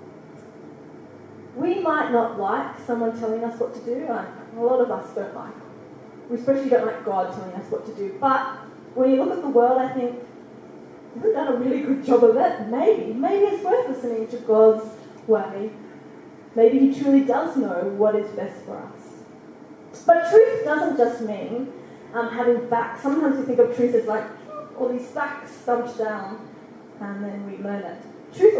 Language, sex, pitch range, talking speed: English, female, 225-275 Hz, 185 wpm